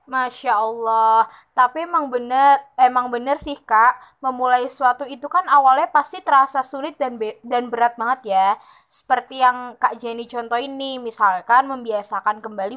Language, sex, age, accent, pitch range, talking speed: Indonesian, female, 20-39, native, 225-275 Hz, 145 wpm